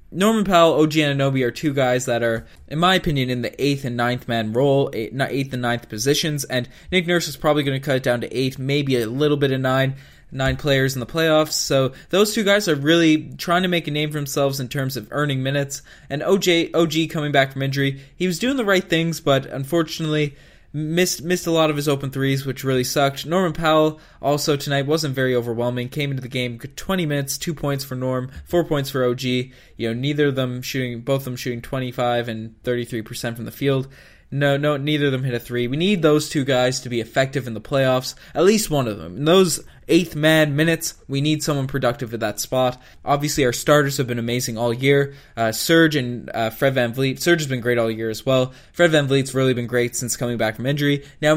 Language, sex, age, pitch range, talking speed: English, male, 20-39, 125-155 Hz, 235 wpm